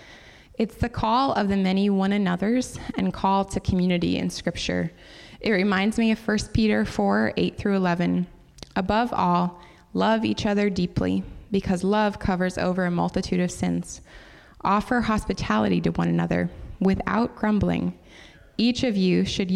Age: 20-39